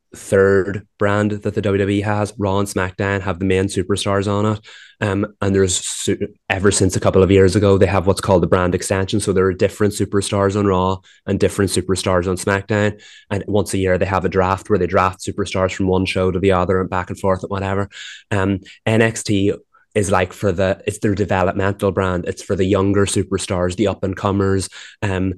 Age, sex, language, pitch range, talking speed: 20-39, male, English, 95-105 Hz, 205 wpm